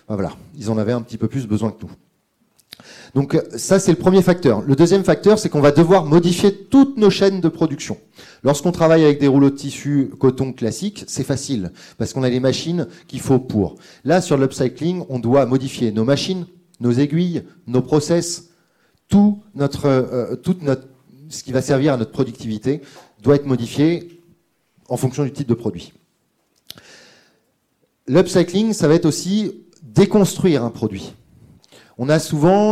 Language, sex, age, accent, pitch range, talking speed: French, male, 30-49, French, 120-170 Hz, 170 wpm